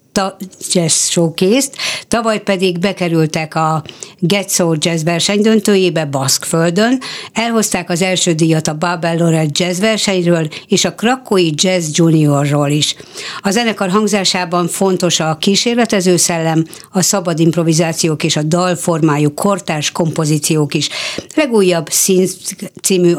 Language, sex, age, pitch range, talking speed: Hungarian, female, 60-79, 160-195 Hz, 120 wpm